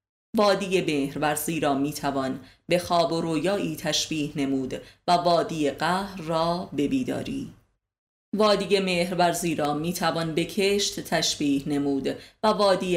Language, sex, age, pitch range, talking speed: Persian, female, 30-49, 145-180 Hz, 130 wpm